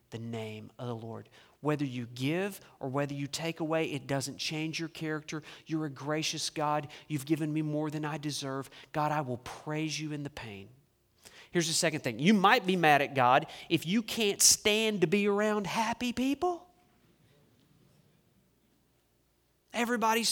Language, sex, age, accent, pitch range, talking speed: English, male, 40-59, American, 145-210 Hz, 170 wpm